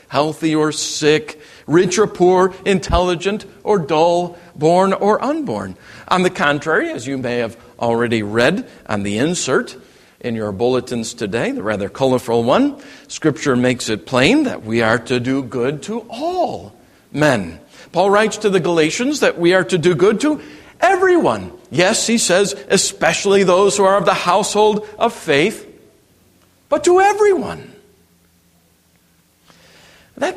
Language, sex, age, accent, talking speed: English, male, 50-69, American, 145 wpm